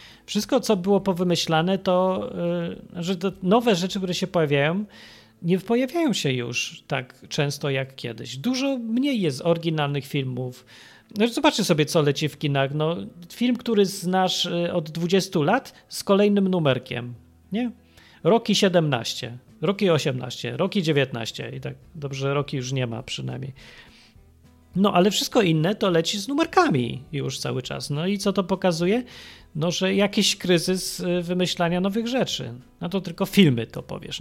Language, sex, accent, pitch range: Polish, male, native, 135-195 Hz